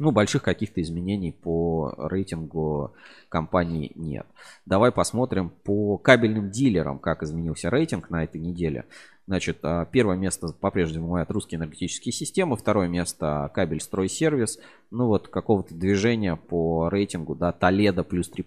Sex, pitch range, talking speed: male, 85-110 Hz, 135 wpm